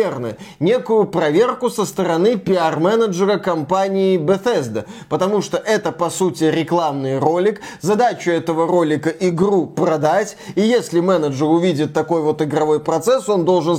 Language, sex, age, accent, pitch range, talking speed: Russian, male, 20-39, native, 165-225 Hz, 125 wpm